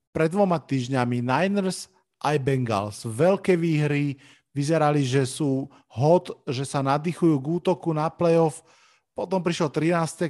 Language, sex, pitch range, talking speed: Slovak, male, 135-160 Hz, 130 wpm